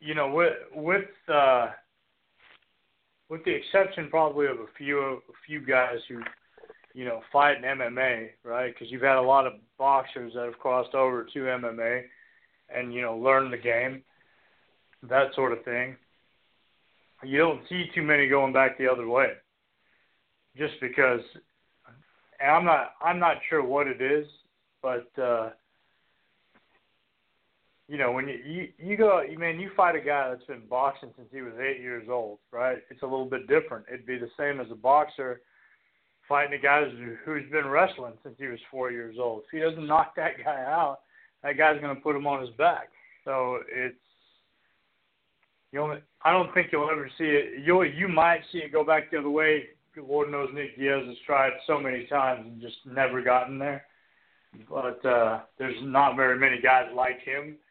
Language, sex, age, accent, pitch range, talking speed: English, male, 30-49, American, 125-150 Hz, 180 wpm